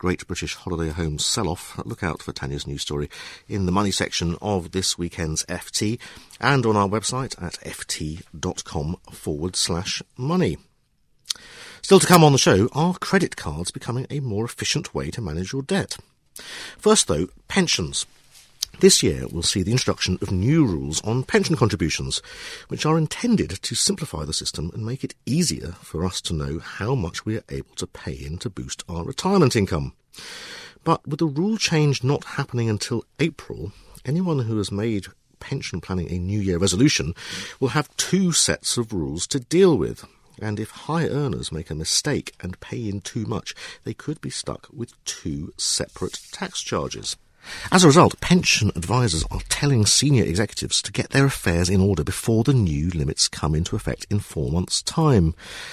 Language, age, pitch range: English, 50-69, 90-135 Hz